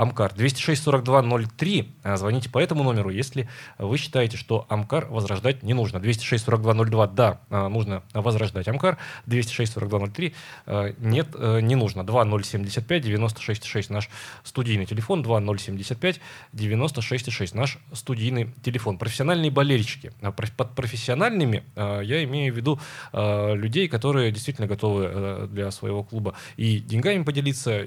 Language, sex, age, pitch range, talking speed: Russian, male, 20-39, 105-135 Hz, 110 wpm